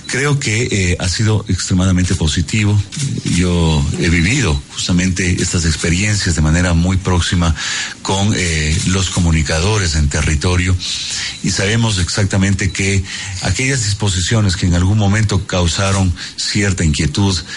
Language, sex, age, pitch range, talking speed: Spanish, male, 40-59, 85-100 Hz, 125 wpm